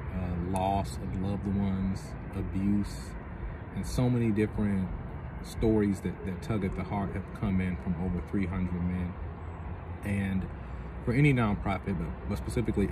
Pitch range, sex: 90-100 Hz, male